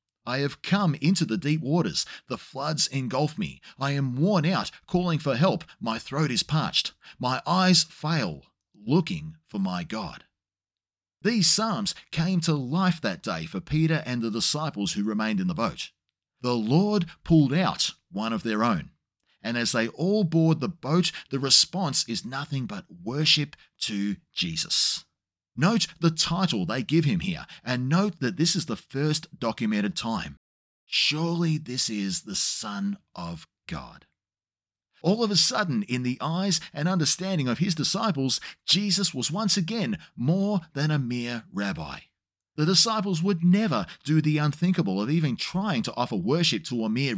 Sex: male